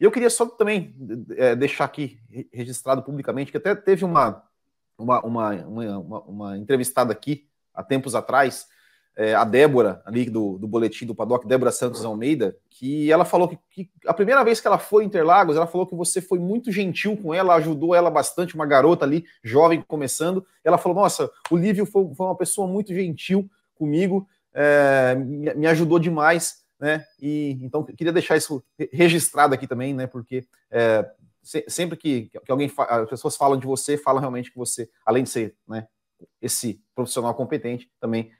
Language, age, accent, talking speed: Portuguese, 30-49, Brazilian, 180 wpm